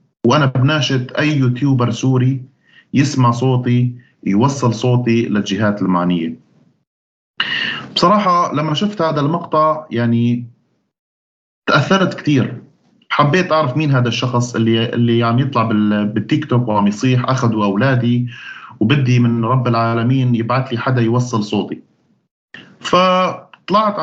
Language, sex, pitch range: Arabic, male, 115-145 Hz